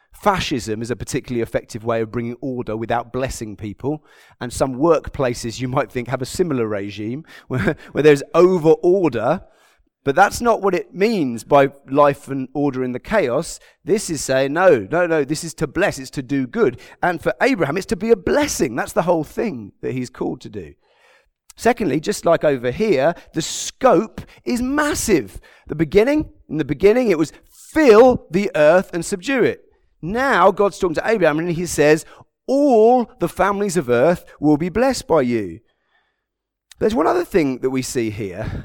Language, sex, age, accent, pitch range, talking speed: English, male, 30-49, British, 125-195 Hz, 185 wpm